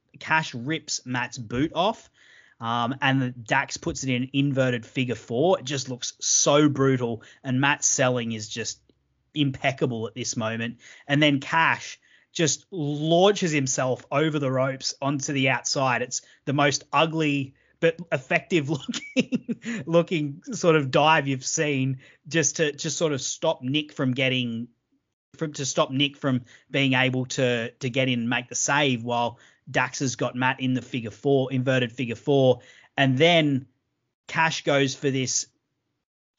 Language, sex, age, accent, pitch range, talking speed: English, male, 30-49, Australian, 125-150 Hz, 160 wpm